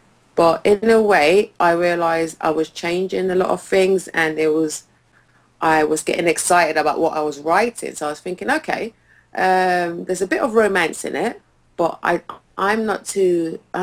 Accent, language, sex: British, English, female